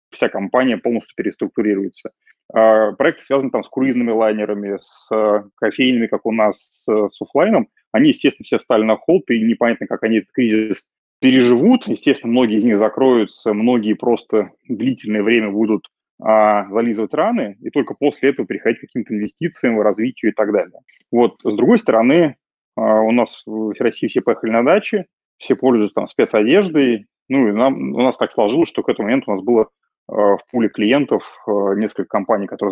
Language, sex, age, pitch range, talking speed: Russian, male, 20-39, 105-135 Hz, 175 wpm